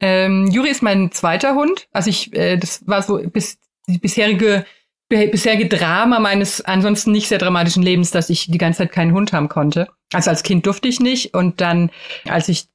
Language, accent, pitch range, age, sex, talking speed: German, German, 175-210 Hz, 30-49, female, 200 wpm